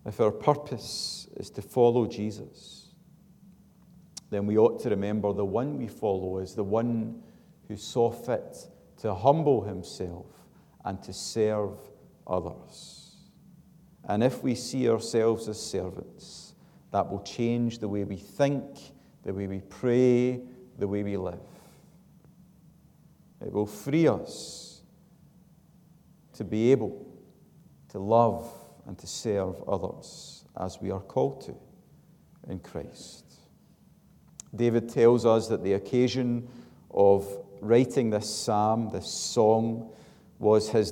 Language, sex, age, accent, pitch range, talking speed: English, male, 40-59, British, 100-140 Hz, 125 wpm